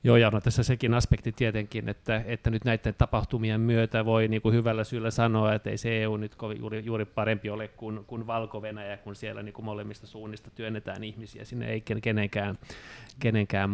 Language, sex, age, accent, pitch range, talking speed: Finnish, male, 30-49, native, 105-115 Hz, 190 wpm